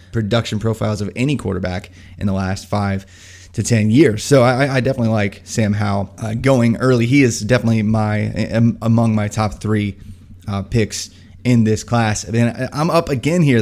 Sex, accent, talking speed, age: male, American, 180 wpm, 20-39